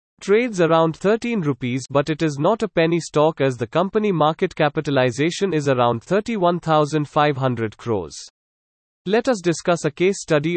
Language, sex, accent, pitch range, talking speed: English, male, Indian, 140-180 Hz, 150 wpm